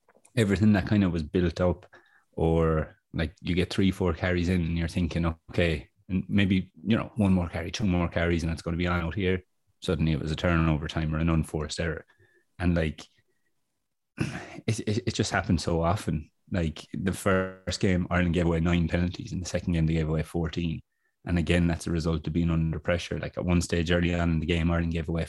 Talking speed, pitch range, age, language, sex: 225 wpm, 85-95 Hz, 20-39, English, male